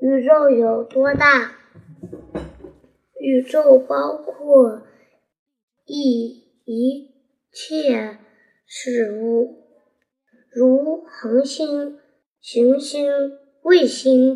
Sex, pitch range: male, 230-275 Hz